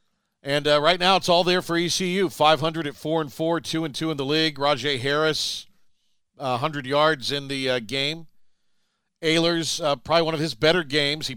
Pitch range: 120-155 Hz